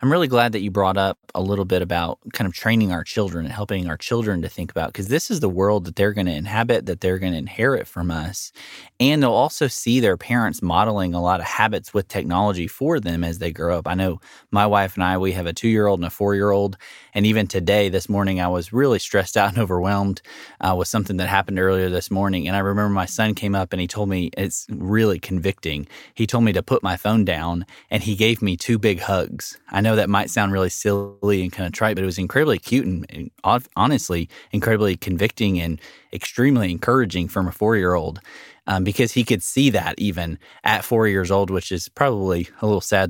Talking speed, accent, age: 230 wpm, American, 20-39